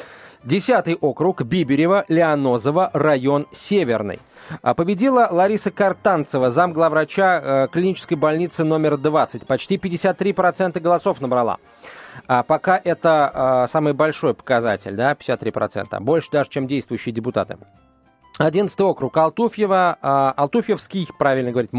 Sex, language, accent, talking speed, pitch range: male, Russian, native, 115 wpm, 145-190 Hz